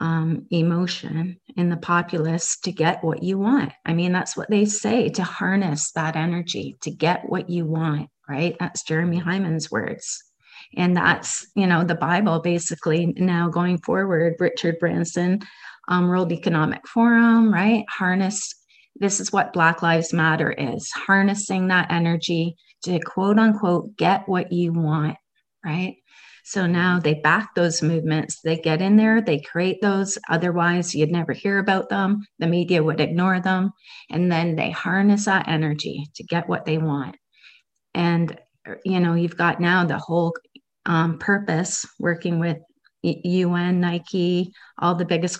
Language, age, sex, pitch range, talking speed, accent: English, 30-49, female, 165-185 Hz, 155 wpm, American